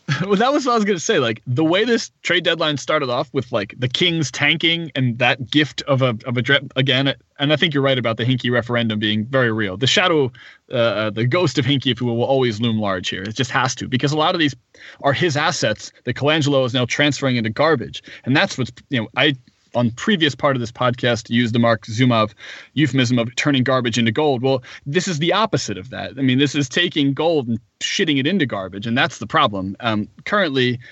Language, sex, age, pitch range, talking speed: English, male, 20-39, 120-145 Hz, 235 wpm